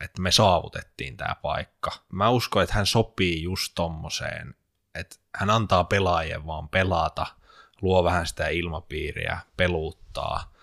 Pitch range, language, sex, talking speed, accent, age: 85-105 Hz, Finnish, male, 130 wpm, native, 20-39